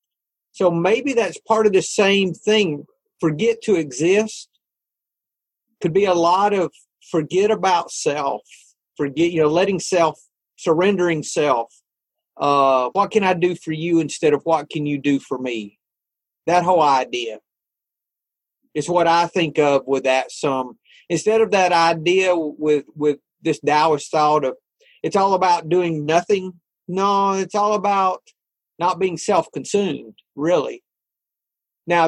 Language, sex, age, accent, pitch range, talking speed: English, male, 40-59, American, 145-190 Hz, 145 wpm